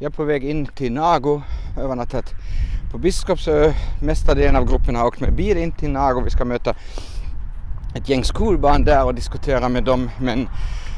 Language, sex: Swedish, male